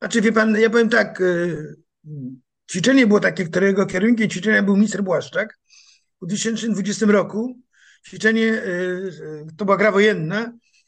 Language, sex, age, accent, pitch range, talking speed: Polish, male, 50-69, native, 195-230 Hz, 130 wpm